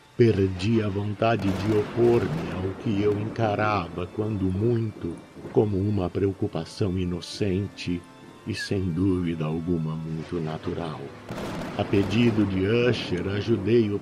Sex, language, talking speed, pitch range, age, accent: male, Portuguese, 110 wpm, 95-115 Hz, 60-79, Brazilian